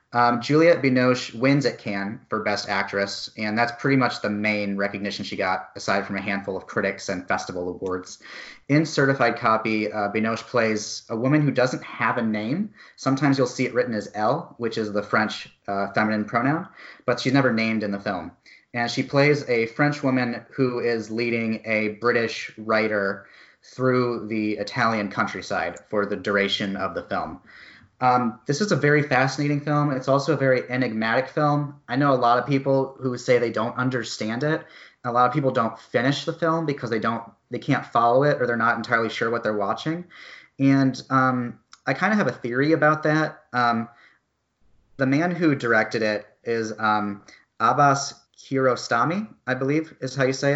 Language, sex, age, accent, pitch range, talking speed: English, male, 30-49, American, 110-140 Hz, 185 wpm